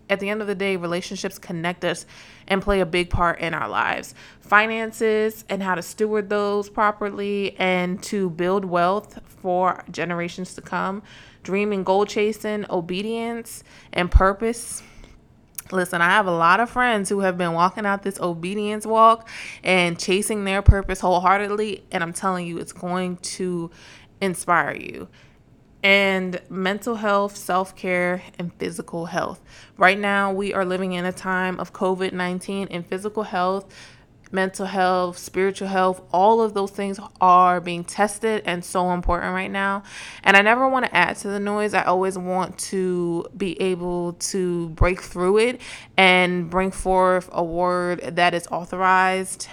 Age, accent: 20-39, American